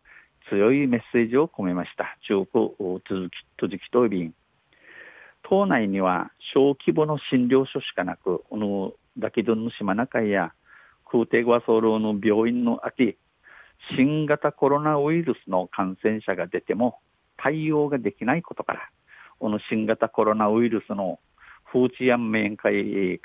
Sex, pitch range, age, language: male, 95-140 Hz, 50-69, Japanese